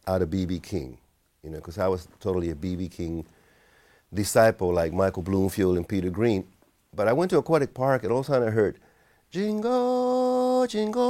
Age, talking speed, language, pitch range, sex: 50-69, 190 wpm, English, 85-110 Hz, male